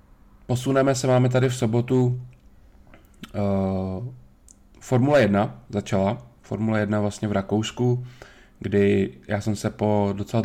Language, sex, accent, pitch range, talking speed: Czech, male, native, 100-115 Hz, 115 wpm